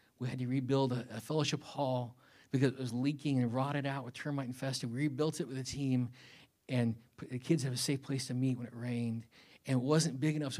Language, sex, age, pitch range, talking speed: English, male, 50-69, 130-160 Hz, 240 wpm